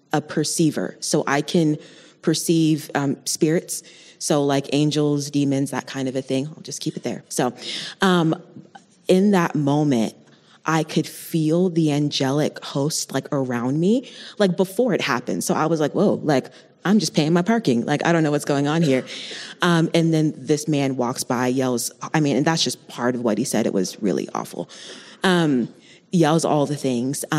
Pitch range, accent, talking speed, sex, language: 140-170 Hz, American, 190 wpm, female, English